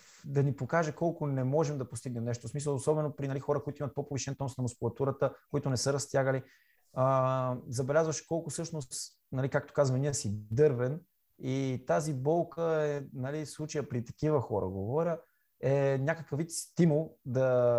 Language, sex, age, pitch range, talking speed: Bulgarian, male, 20-39, 120-145 Hz, 170 wpm